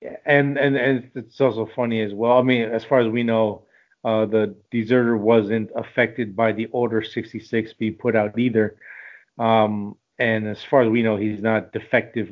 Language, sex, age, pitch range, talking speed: English, male, 30-49, 105-120 Hz, 185 wpm